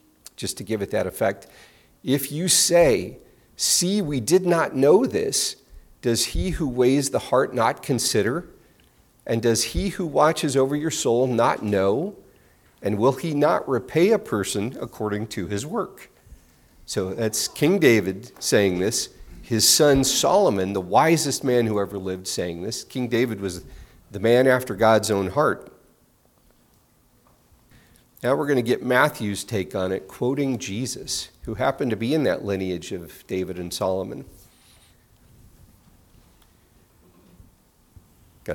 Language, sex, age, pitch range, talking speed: English, male, 40-59, 95-130 Hz, 145 wpm